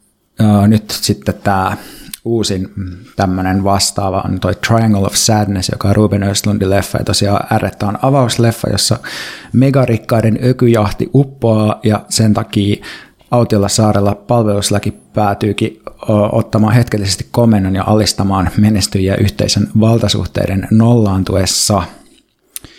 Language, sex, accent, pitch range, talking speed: Finnish, male, native, 100-115 Hz, 110 wpm